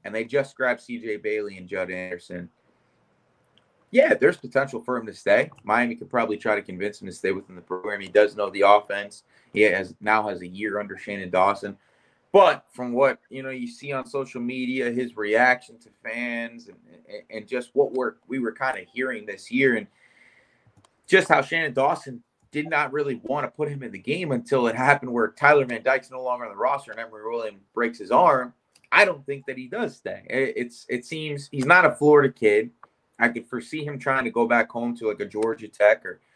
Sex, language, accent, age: male, English, American, 20-39